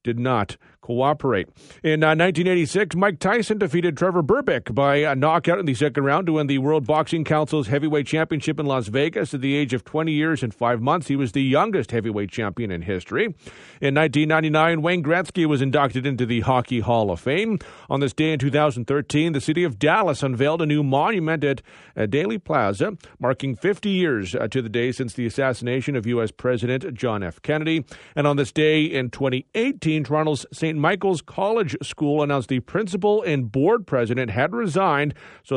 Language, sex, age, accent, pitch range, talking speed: English, male, 40-59, American, 130-160 Hz, 185 wpm